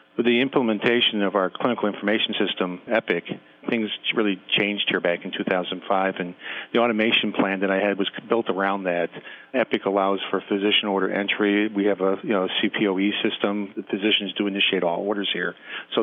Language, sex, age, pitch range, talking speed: English, male, 40-59, 95-110 Hz, 180 wpm